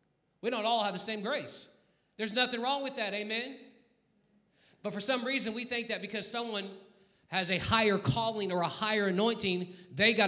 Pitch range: 165-215 Hz